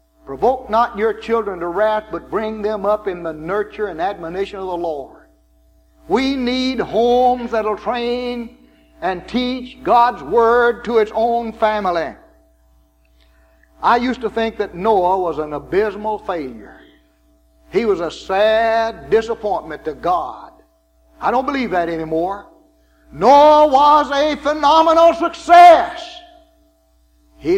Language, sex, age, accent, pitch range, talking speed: English, male, 60-79, American, 145-240 Hz, 130 wpm